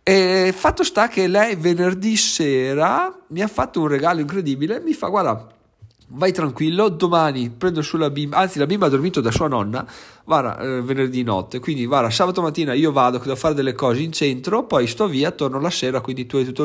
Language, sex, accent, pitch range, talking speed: Italian, male, native, 125-160 Hz, 205 wpm